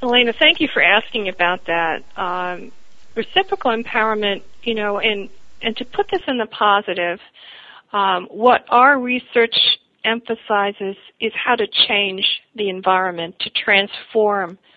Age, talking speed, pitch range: 50-69, 135 wpm, 185-225 Hz